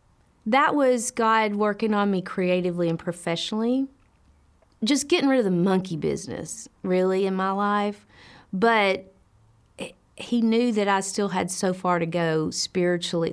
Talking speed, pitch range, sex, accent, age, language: 145 wpm, 175-205 Hz, female, American, 40-59, English